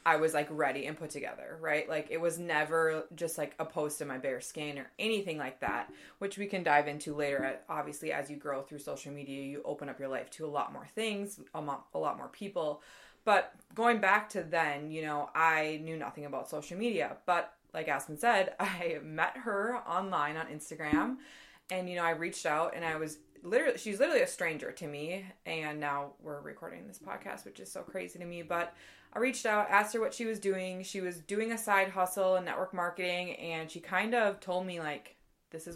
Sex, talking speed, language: female, 220 wpm, English